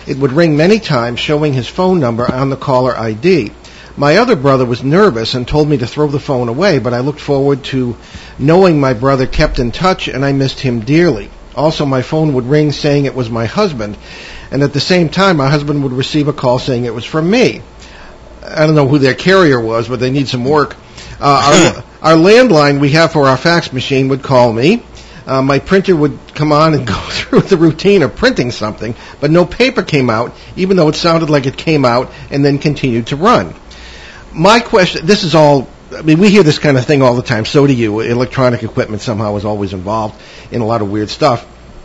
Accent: American